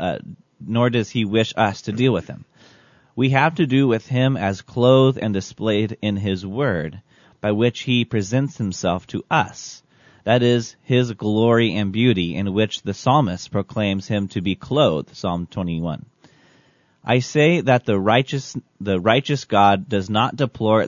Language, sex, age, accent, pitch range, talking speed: English, male, 30-49, American, 100-125 Hz, 165 wpm